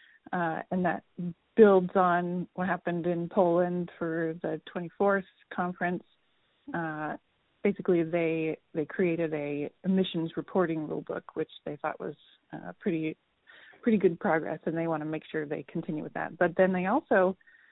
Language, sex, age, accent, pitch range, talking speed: English, female, 30-49, American, 165-200 Hz, 150 wpm